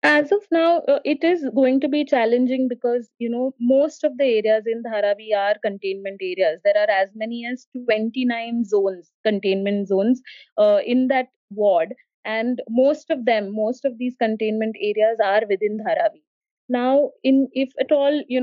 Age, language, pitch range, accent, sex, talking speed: 30-49, English, 220-275 Hz, Indian, female, 175 wpm